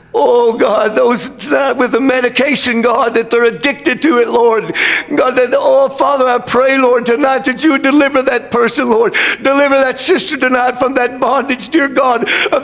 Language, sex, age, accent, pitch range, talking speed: English, male, 60-79, American, 235-275 Hz, 185 wpm